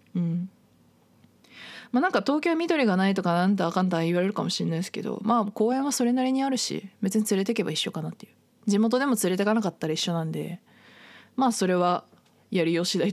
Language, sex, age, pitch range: Japanese, female, 20-39, 170-230 Hz